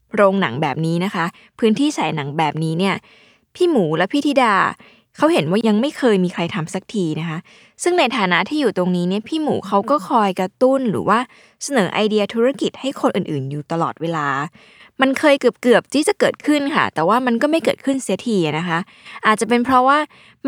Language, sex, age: Thai, female, 20-39